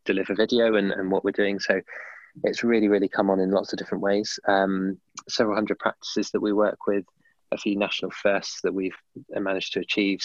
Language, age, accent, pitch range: English, 20-39, British, 95-105 Hz